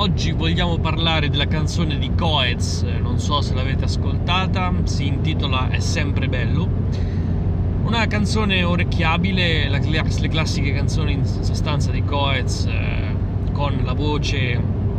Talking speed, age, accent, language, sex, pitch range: 120 wpm, 30-49, native, Italian, male, 95-110 Hz